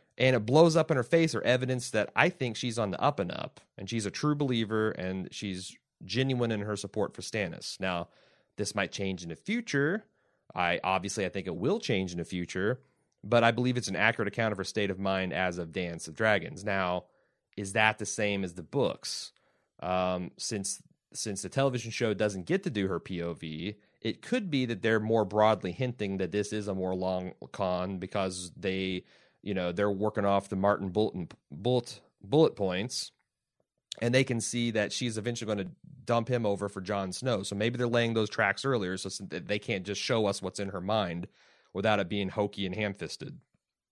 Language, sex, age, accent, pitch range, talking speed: English, male, 30-49, American, 95-125 Hz, 210 wpm